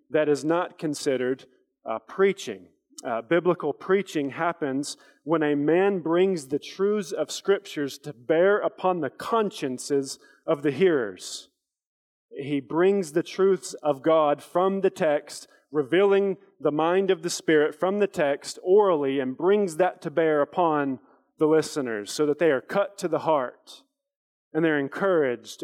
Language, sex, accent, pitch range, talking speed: English, male, American, 145-180 Hz, 150 wpm